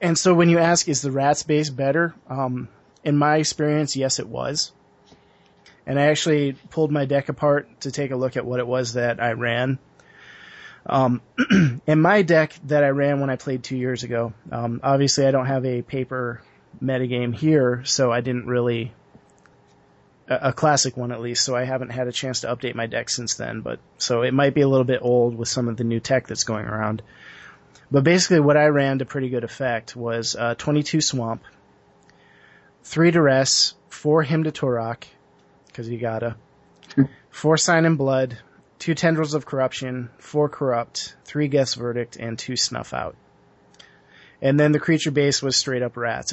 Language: English